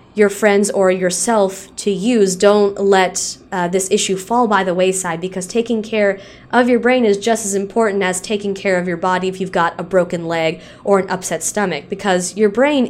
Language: English